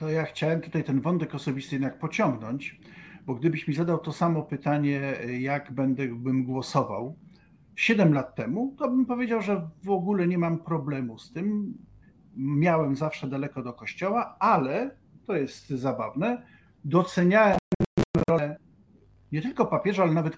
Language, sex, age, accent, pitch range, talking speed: Polish, male, 50-69, native, 135-190 Hz, 145 wpm